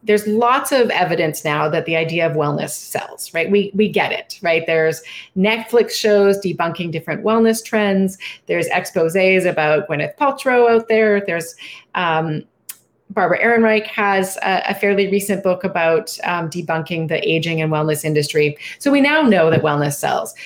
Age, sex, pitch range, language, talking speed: 30-49, female, 165-210 Hz, English, 165 wpm